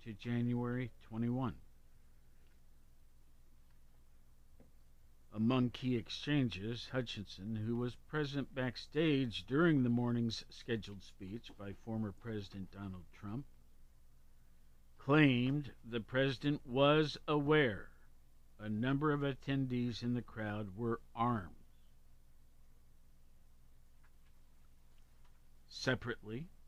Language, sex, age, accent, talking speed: English, male, 50-69, American, 80 wpm